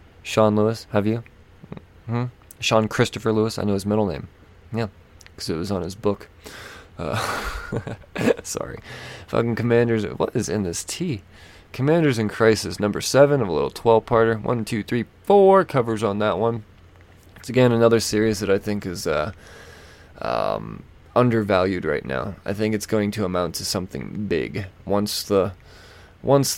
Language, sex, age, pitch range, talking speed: English, male, 20-39, 95-115 Hz, 160 wpm